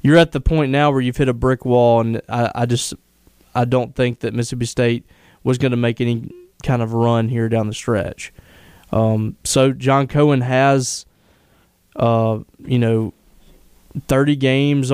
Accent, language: American, English